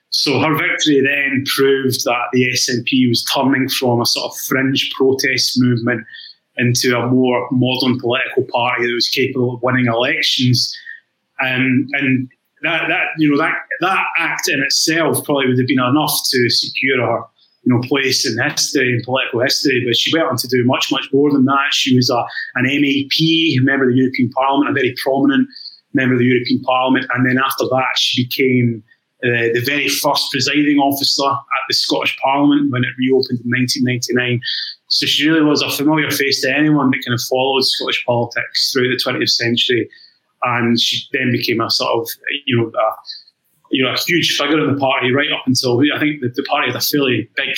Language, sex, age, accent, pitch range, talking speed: English, male, 30-49, British, 125-145 Hz, 195 wpm